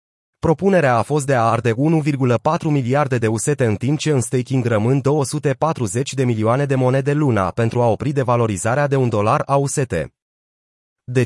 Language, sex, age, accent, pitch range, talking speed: Romanian, male, 30-49, native, 115-145 Hz, 170 wpm